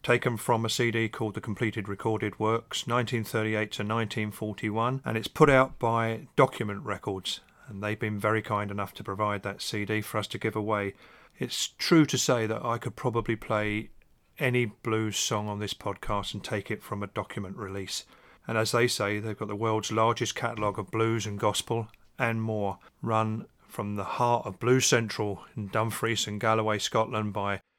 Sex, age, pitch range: male, 40-59, 105-120 Hz